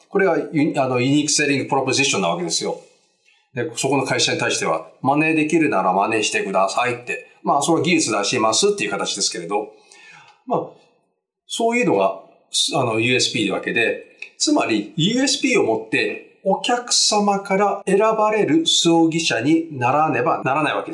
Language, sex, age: Japanese, male, 40-59